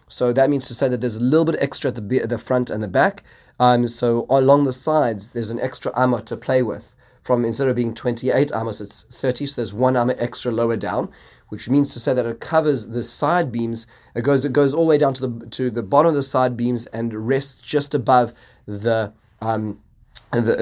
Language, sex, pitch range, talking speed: English, male, 110-130 Hz, 235 wpm